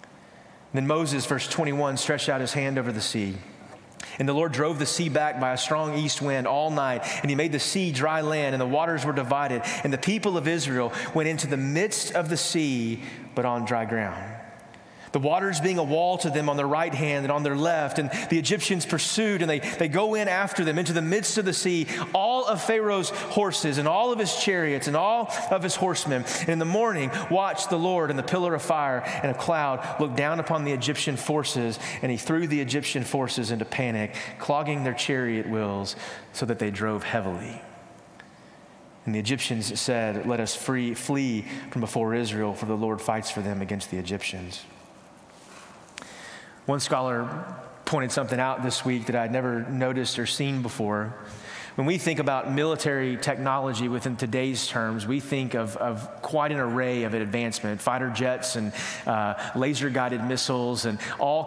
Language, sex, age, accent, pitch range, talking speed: English, male, 30-49, American, 120-160 Hz, 190 wpm